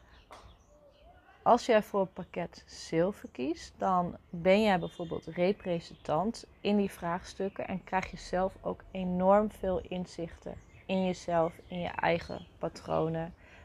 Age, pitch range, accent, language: 30-49, 165-195 Hz, Dutch, Dutch